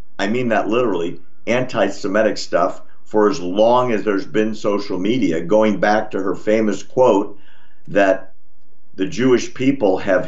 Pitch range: 90-110 Hz